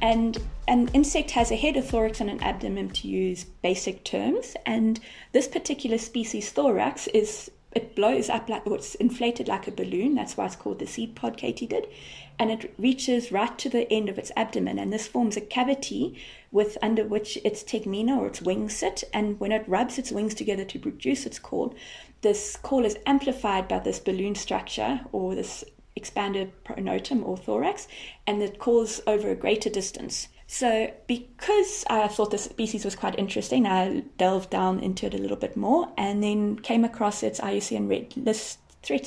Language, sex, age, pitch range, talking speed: English, female, 30-49, 205-250 Hz, 190 wpm